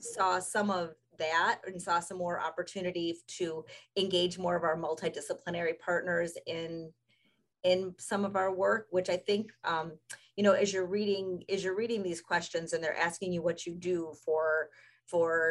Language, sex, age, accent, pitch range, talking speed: English, female, 30-49, American, 165-200 Hz, 175 wpm